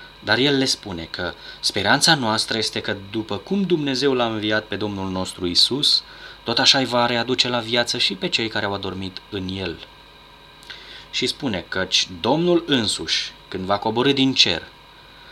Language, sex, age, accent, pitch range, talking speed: Romanian, male, 20-39, native, 95-130 Hz, 170 wpm